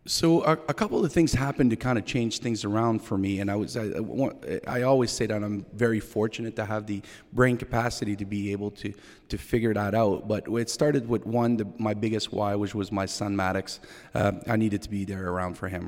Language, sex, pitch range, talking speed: English, male, 100-115 Hz, 235 wpm